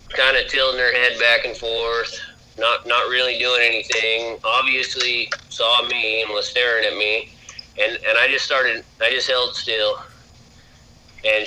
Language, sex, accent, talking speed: English, male, American, 160 wpm